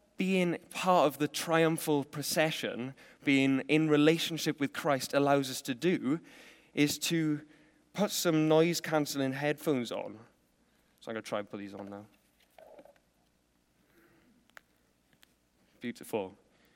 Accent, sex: British, male